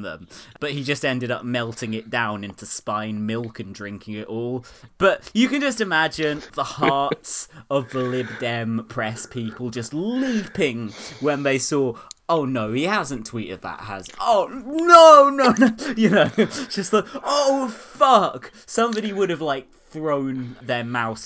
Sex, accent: male, British